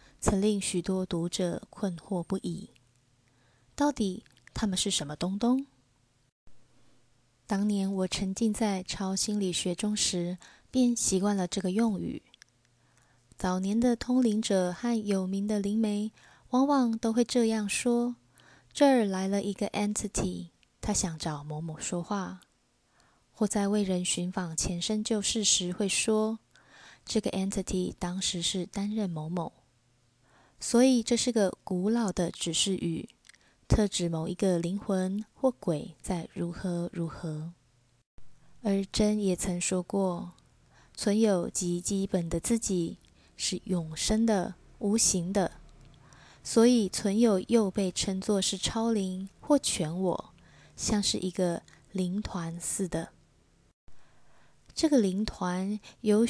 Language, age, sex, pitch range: Chinese, 20-39, female, 175-210 Hz